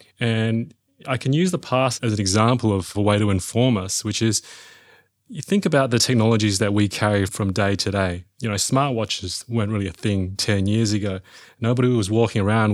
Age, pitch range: 30-49, 100-130 Hz